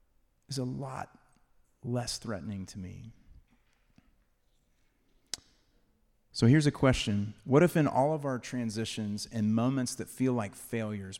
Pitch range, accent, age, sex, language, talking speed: 105-125 Hz, American, 30-49, male, English, 130 wpm